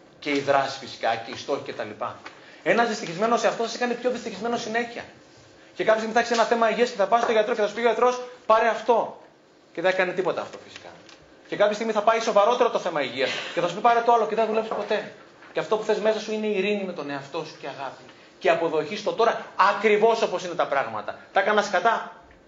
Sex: male